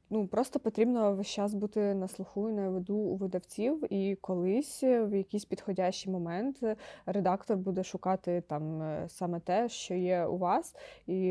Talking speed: 160 wpm